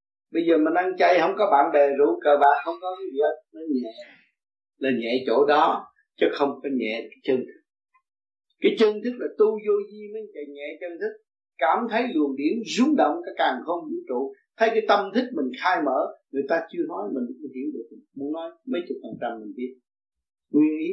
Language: Vietnamese